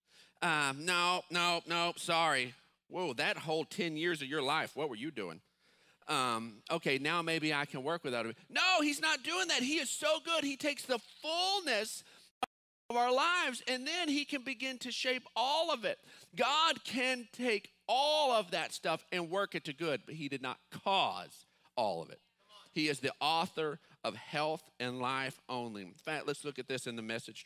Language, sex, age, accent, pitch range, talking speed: English, male, 40-59, American, 145-230 Hz, 195 wpm